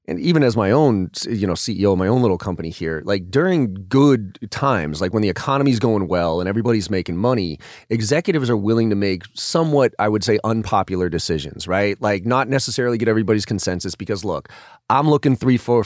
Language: English